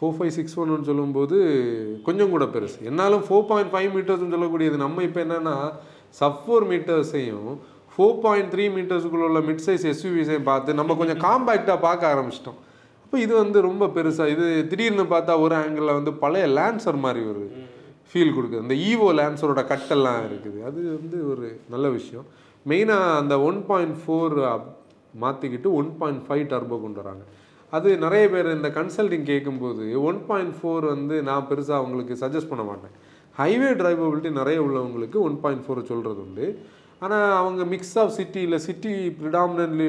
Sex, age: male, 30-49